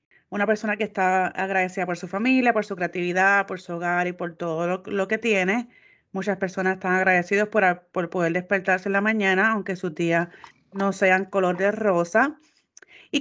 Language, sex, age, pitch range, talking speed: Spanish, female, 30-49, 180-230 Hz, 185 wpm